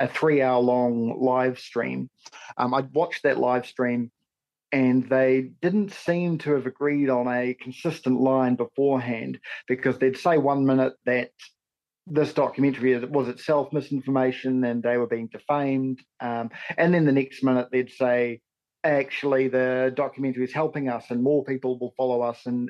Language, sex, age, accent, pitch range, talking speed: English, male, 40-59, Australian, 125-145 Hz, 160 wpm